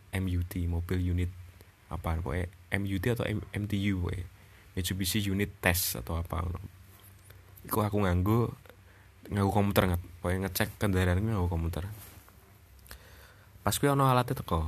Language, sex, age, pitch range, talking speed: Indonesian, male, 20-39, 90-105 Hz, 115 wpm